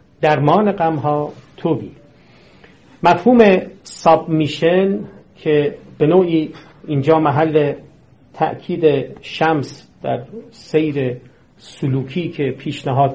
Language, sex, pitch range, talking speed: Persian, male, 140-170 Hz, 85 wpm